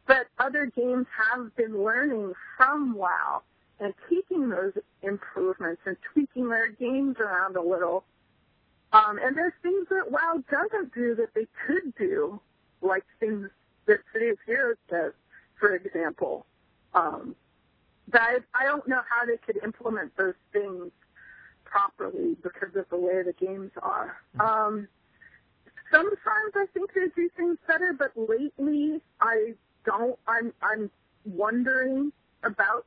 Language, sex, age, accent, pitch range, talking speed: English, female, 40-59, American, 205-285 Hz, 135 wpm